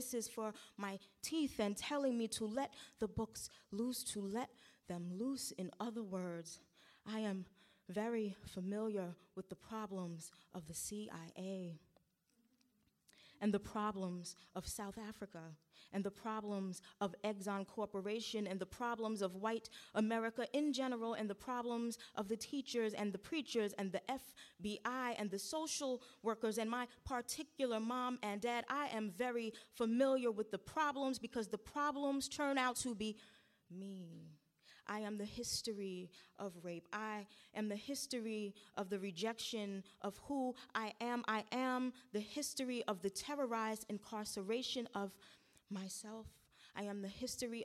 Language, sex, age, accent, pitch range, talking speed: English, female, 20-39, American, 200-245 Hz, 150 wpm